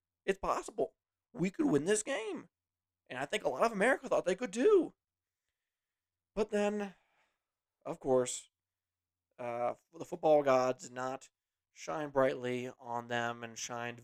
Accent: American